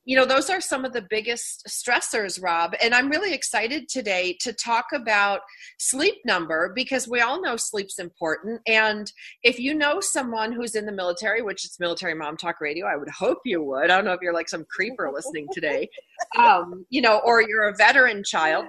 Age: 40-59